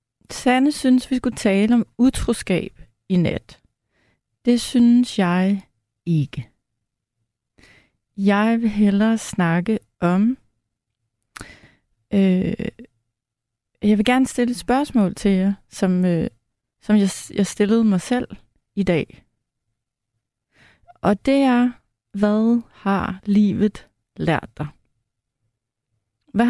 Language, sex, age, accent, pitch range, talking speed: Danish, female, 30-49, native, 130-210 Hz, 100 wpm